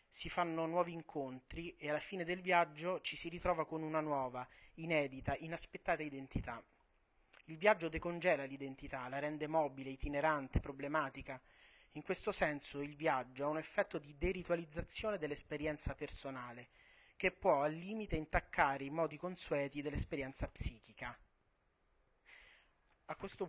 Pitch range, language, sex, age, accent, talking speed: 145-175 Hz, Italian, male, 30-49, native, 130 wpm